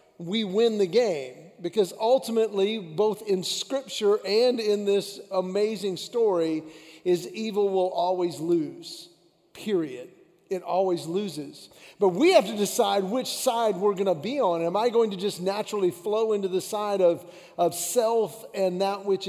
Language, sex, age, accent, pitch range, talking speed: English, male, 40-59, American, 180-215 Hz, 160 wpm